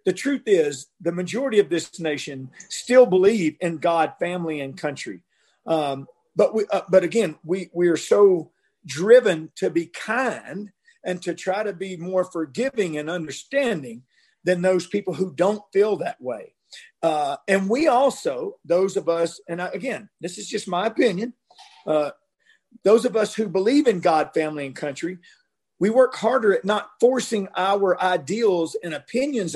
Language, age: English, 50-69